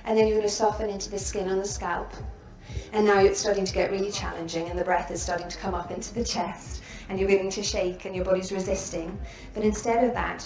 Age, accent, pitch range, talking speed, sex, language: 30-49, British, 180-215 Hz, 250 wpm, female, English